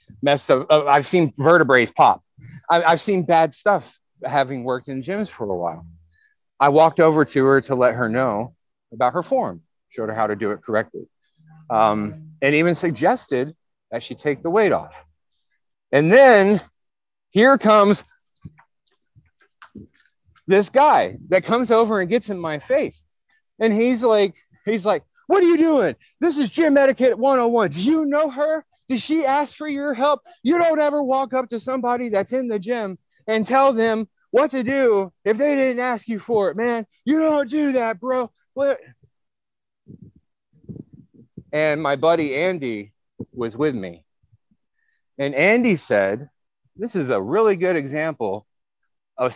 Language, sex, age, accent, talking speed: English, male, 40-59, American, 160 wpm